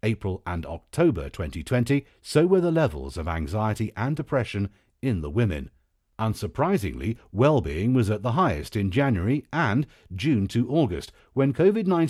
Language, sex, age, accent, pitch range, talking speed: English, male, 50-69, British, 90-135 Hz, 145 wpm